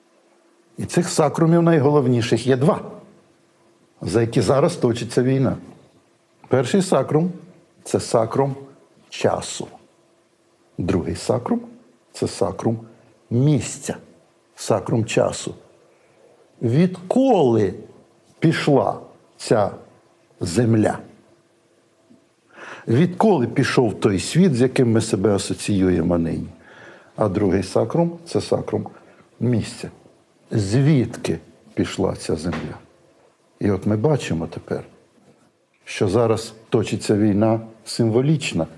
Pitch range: 110-155 Hz